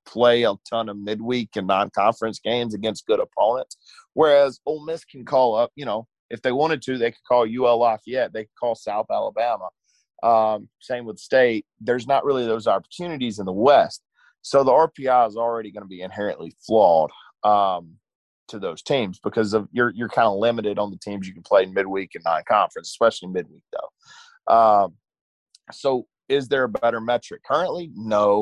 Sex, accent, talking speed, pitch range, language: male, American, 190 wpm, 105-140 Hz, English